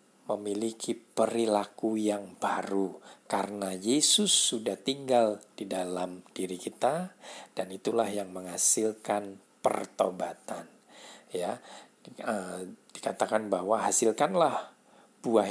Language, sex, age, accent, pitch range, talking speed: Indonesian, male, 50-69, native, 100-130 Hz, 90 wpm